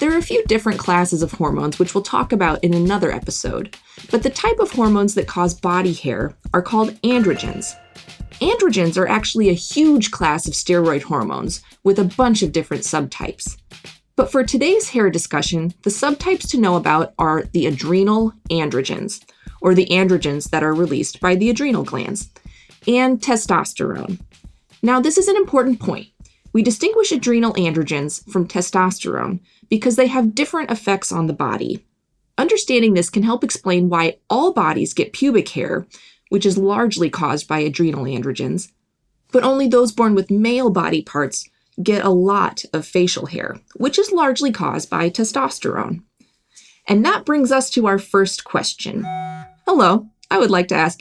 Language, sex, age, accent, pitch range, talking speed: English, female, 20-39, American, 175-245 Hz, 165 wpm